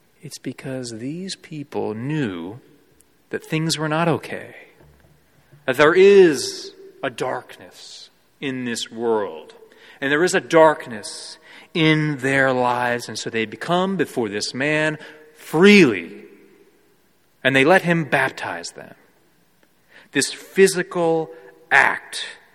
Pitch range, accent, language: 130-180 Hz, American, English